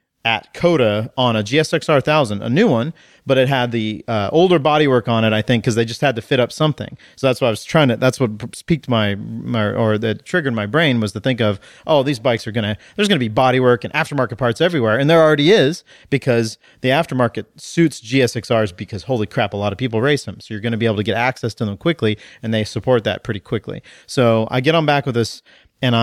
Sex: male